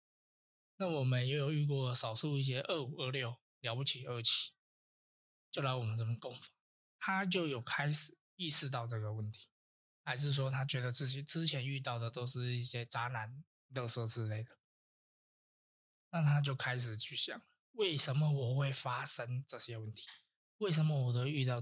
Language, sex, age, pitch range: Chinese, male, 20-39, 115-150 Hz